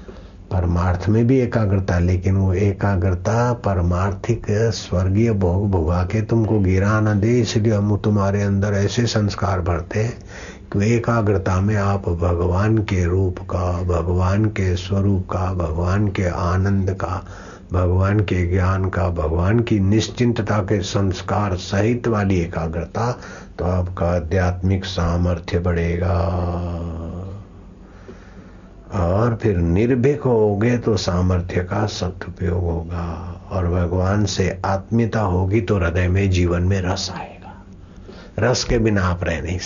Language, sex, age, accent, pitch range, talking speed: Hindi, male, 60-79, native, 90-105 Hz, 125 wpm